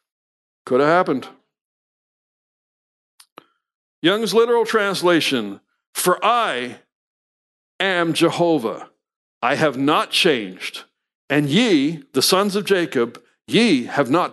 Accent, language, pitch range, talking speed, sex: American, English, 140-235 Hz, 95 wpm, male